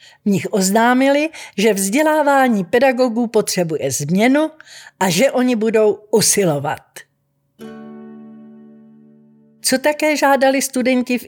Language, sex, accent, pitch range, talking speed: Czech, female, native, 185-260 Hz, 95 wpm